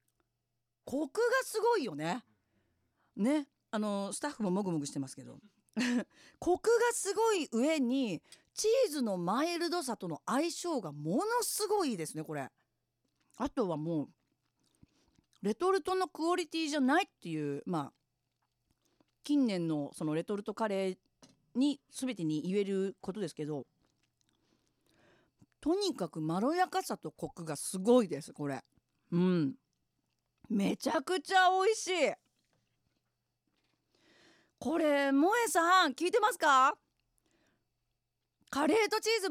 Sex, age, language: female, 40-59, Japanese